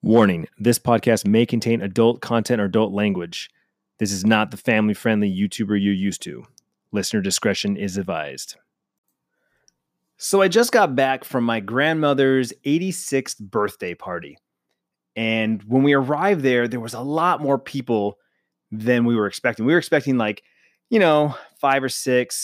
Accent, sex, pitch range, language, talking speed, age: American, male, 105-135 Hz, English, 155 wpm, 30-49